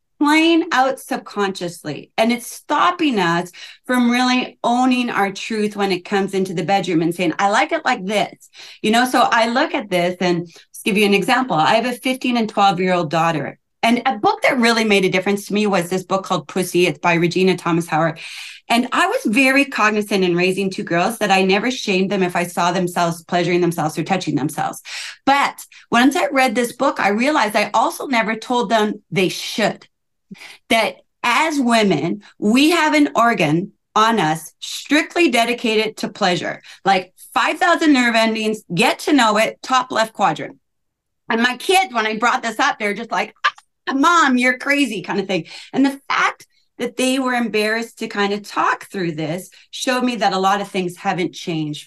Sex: female